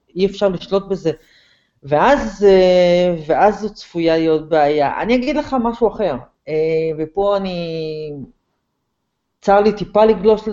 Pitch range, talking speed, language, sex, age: 150-205 Hz, 120 wpm, Hebrew, female, 40-59